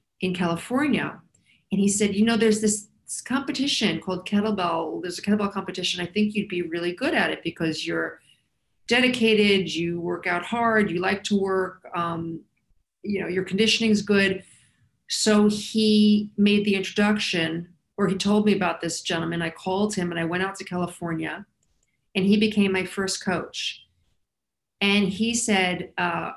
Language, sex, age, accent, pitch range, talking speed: English, female, 40-59, American, 175-210 Hz, 165 wpm